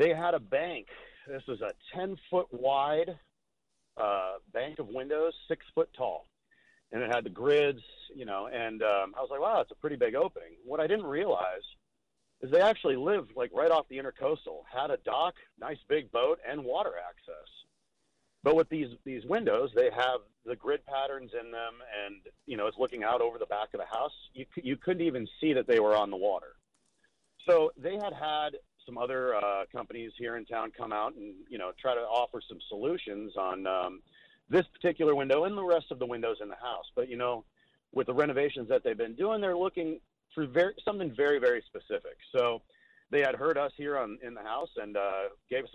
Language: English